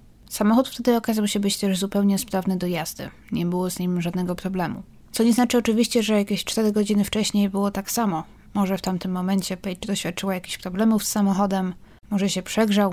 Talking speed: 190 wpm